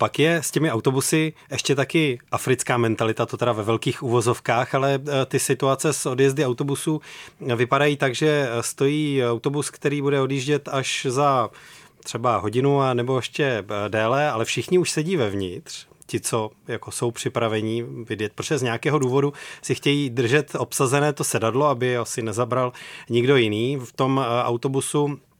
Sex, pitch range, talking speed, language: male, 125-145 Hz, 155 wpm, Czech